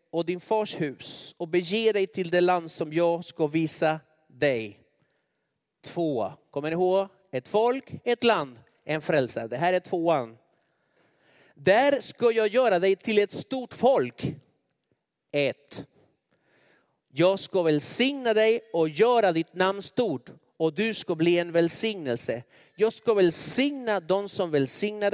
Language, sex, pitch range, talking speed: Swedish, male, 160-220 Hz, 145 wpm